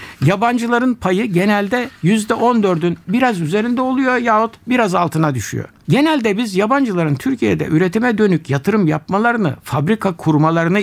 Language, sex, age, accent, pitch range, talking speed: Turkish, male, 60-79, native, 145-210 Hz, 115 wpm